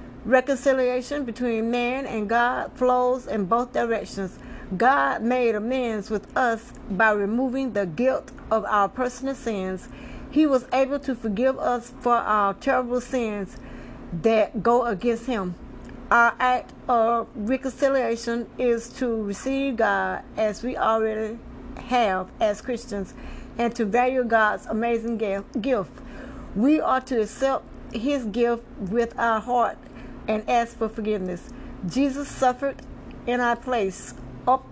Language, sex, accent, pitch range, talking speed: English, female, American, 215-255 Hz, 130 wpm